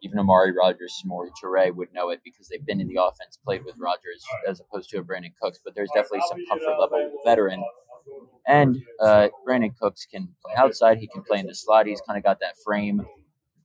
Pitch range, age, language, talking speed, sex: 100-155 Hz, 20-39, English, 215 wpm, male